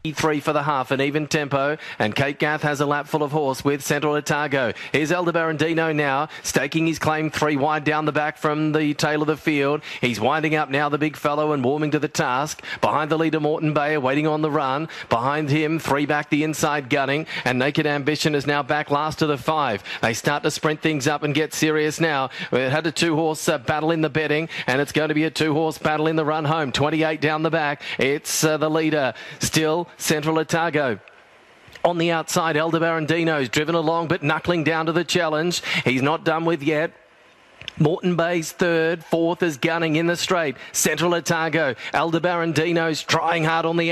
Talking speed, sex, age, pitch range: 210 wpm, male, 40-59, 150-165 Hz